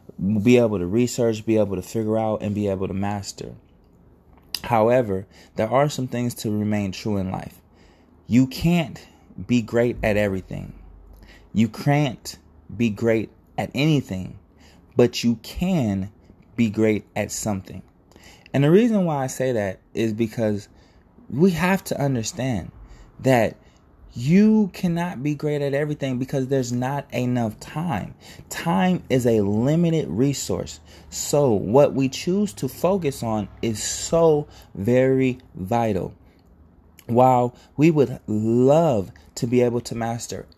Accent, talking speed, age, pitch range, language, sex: American, 140 wpm, 20-39, 100-135 Hz, English, male